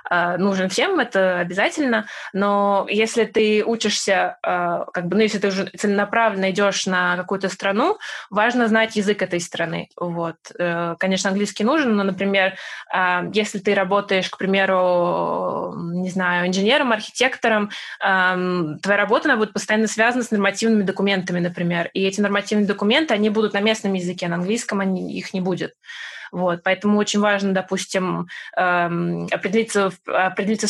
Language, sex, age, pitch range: Russian, female, 20-39, 180-215 Hz